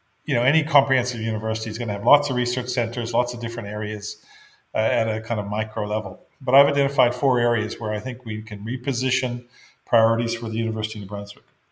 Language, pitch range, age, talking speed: English, 110-130 Hz, 40-59, 210 wpm